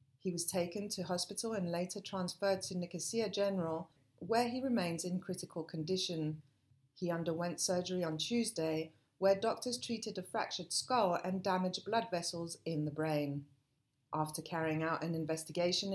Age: 40-59